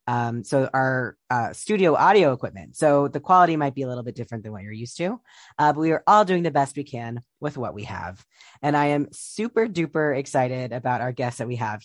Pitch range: 130-160 Hz